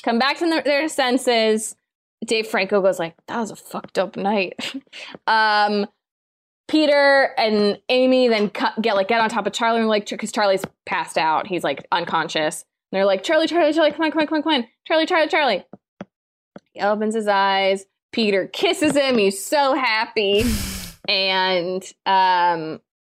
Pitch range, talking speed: 190-240 Hz, 170 wpm